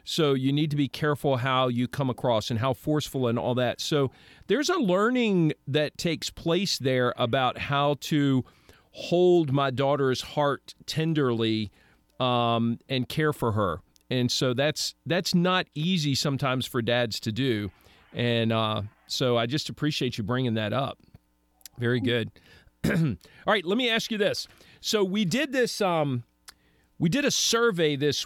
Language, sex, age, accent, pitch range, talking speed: English, male, 40-59, American, 125-165 Hz, 165 wpm